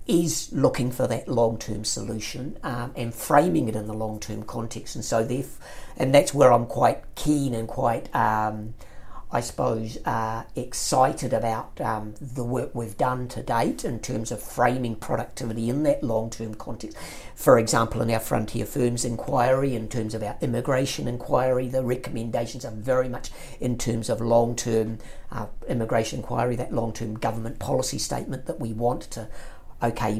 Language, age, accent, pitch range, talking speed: English, 50-69, British, 115-130 Hz, 160 wpm